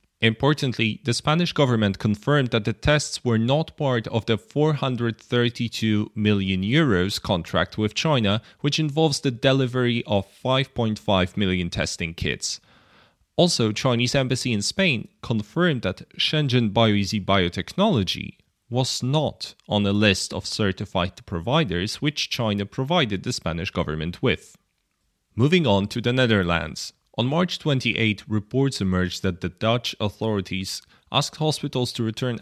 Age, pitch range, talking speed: 30-49, 100-135 Hz, 130 wpm